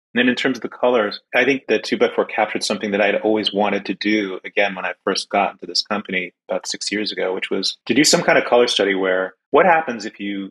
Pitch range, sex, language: 95-110 Hz, male, English